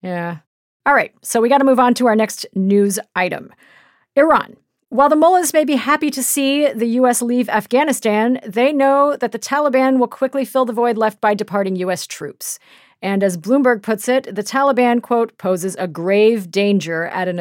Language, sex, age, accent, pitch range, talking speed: English, female, 40-59, American, 195-250 Hz, 195 wpm